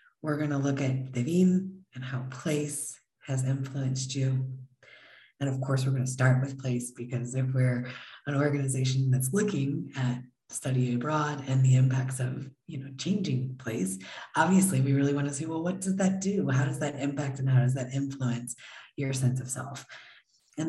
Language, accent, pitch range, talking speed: English, American, 130-145 Hz, 185 wpm